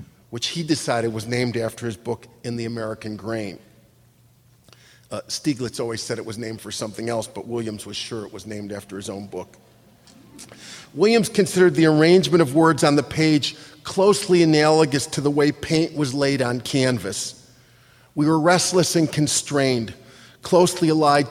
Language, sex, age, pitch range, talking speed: English, male, 40-59, 125-155 Hz, 165 wpm